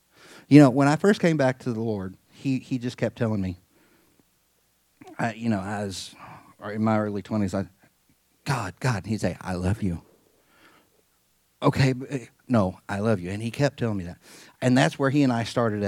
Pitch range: 100-120 Hz